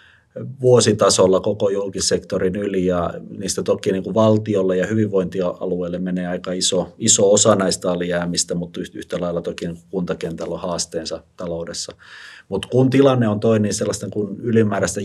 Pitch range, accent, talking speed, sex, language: 90-105 Hz, native, 135 wpm, male, Finnish